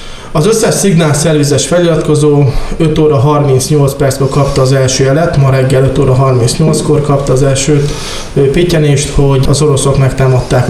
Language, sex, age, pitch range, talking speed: Hungarian, male, 20-39, 135-155 Hz, 140 wpm